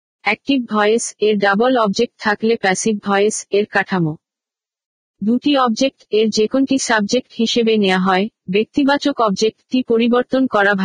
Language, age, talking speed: Bengali, 50-69, 85 wpm